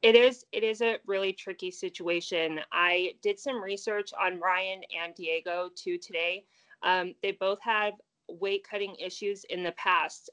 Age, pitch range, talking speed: 30-49, 175-210 Hz, 155 wpm